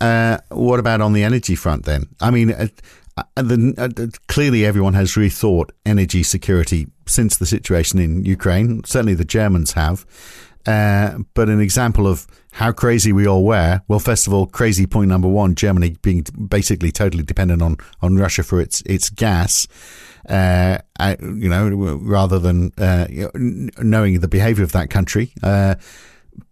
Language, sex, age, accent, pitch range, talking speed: English, male, 50-69, British, 95-110 Hz, 160 wpm